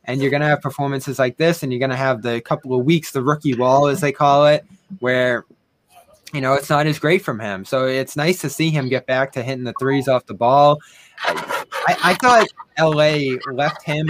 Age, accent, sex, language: 20-39, American, male, English